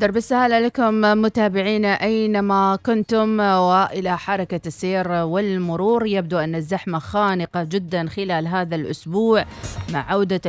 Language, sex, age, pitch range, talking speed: Arabic, female, 30-49, 175-215 Hz, 110 wpm